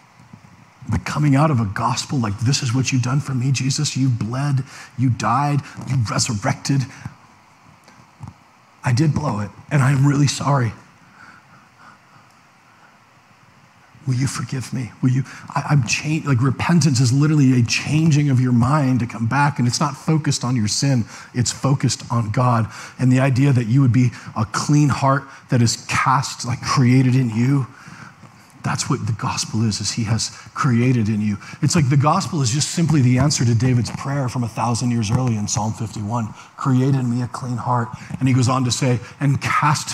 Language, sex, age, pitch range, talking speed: English, male, 40-59, 120-140 Hz, 185 wpm